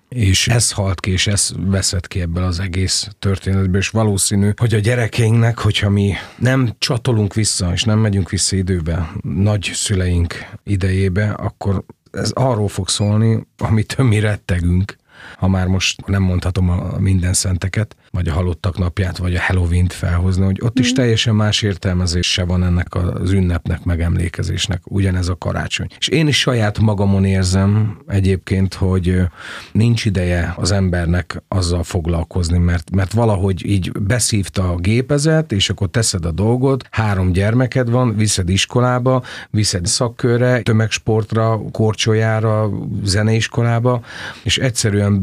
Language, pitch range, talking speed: Hungarian, 90-110 Hz, 140 wpm